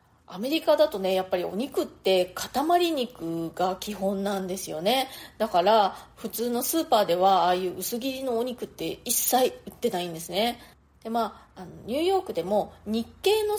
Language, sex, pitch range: Japanese, female, 185-280 Hz